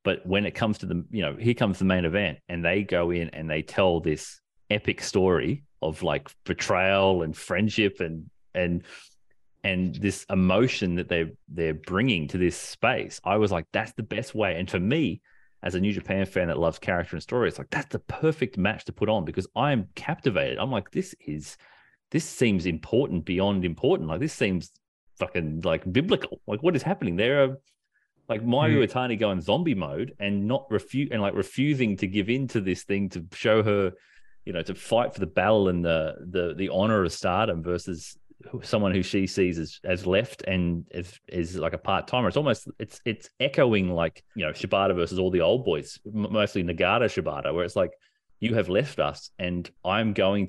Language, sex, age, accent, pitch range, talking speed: English, male, 30-49, Australian, 85-105 Hz, 205 wpm